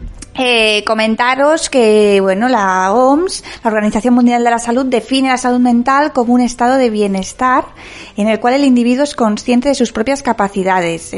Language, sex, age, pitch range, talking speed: Spanish, female, 20-39, 205-260 Hz, 170 wpm